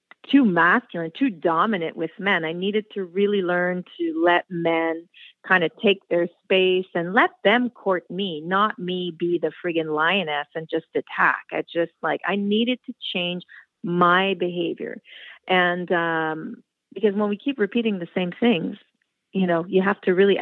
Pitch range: 175-215 Hz